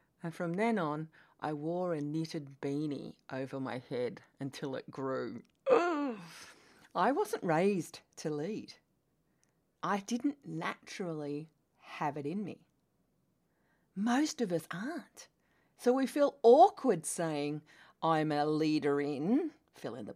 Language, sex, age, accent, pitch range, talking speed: English, female, 40-59, Australian, 155-245 Hz, 130 wpm